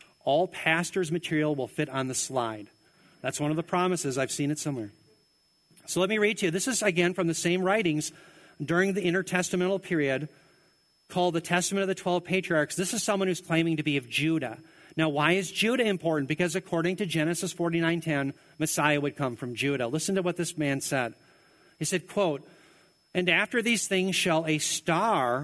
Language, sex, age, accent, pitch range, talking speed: English, male, 40-59, American, 150-185 Hz, 190 wpm